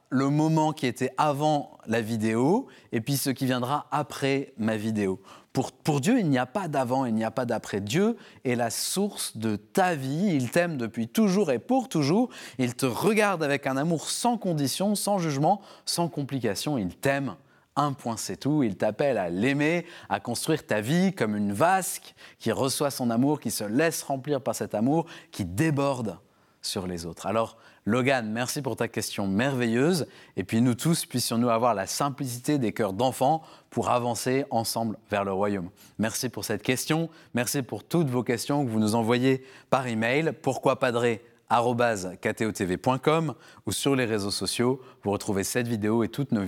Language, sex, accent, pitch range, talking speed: French, male, French, 115-150 Hz, 180 wpm